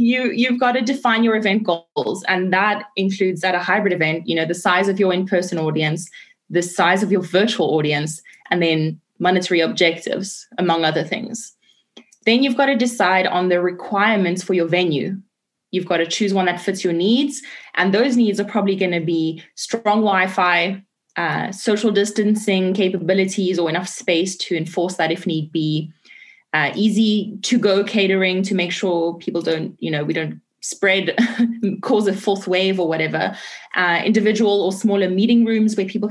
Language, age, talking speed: English, 20-39, 180 wpm